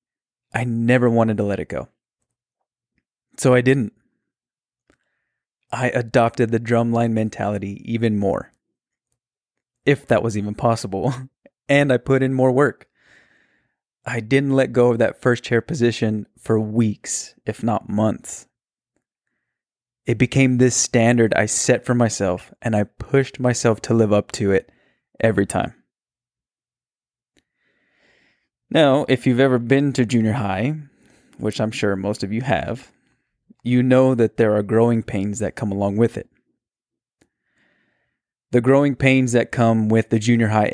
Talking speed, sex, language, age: 145 wpm, male, English, 20-39